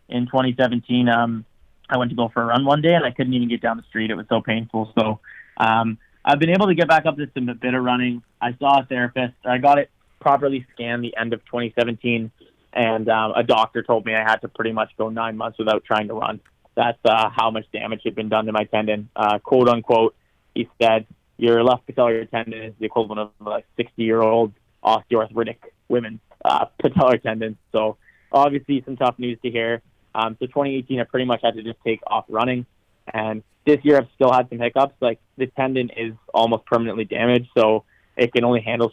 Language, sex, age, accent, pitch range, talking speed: English, male, 20-39, American, 110-130 Hz, 215 wpm